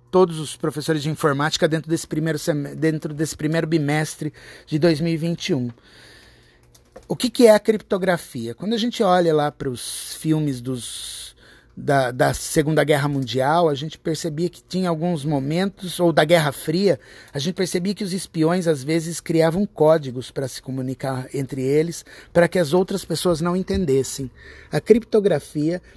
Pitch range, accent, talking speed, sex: 145-185 Hz, Brazilian, 160 wpm, male